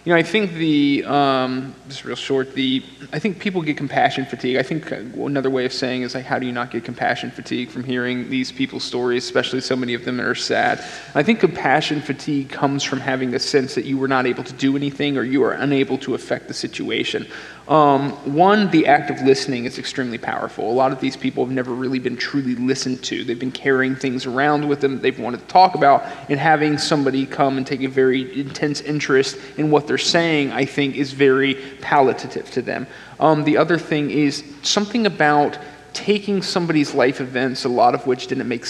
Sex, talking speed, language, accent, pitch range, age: male, 220 wpm, English, American, 130-150 Hz, 30-49